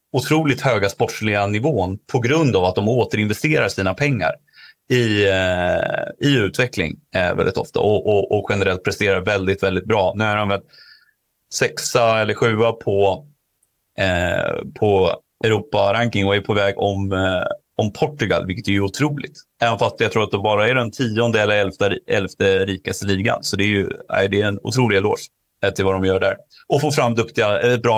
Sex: male